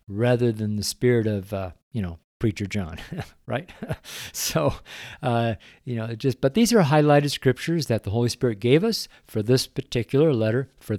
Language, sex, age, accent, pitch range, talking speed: English, male, 50-69, American, 100-140 Hz, 180 wpm